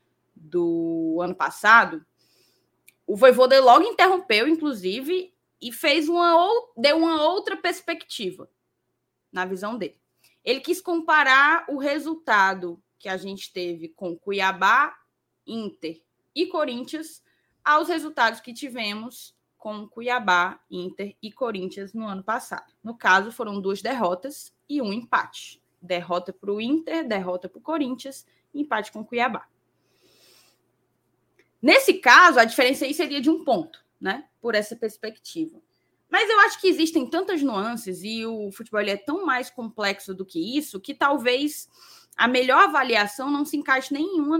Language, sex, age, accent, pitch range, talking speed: Portuguese, female, 10-29, Brazilian, 195-310 Hz, 140 wpm